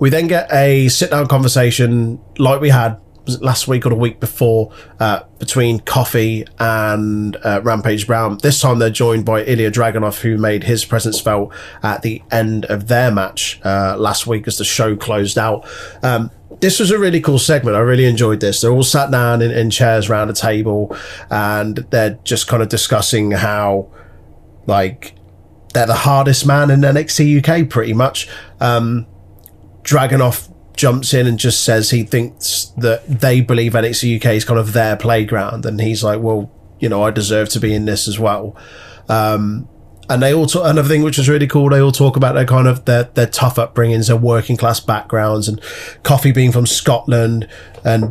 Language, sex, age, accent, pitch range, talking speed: English, male, 30-49, British, 105-125 Hz, 185 wpm